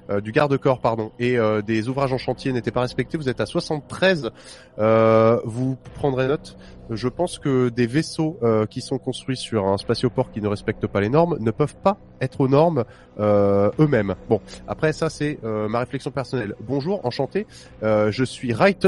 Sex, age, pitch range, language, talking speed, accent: male, 20-39, 110-150 Hz, French, 190 wpm, French